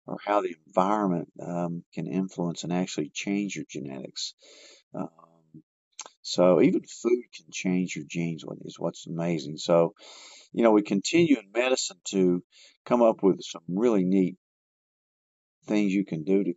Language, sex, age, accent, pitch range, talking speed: English, male, 50-69, American, 85-100 Hz, 150 wpm